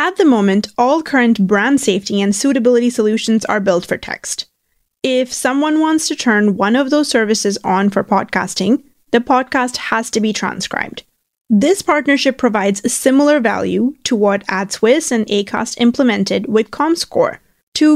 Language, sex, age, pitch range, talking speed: English, female, 20-39, 205-265 Hz, 155 wpm